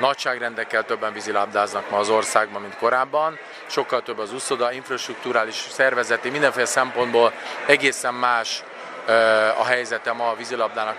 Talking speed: 125 wpm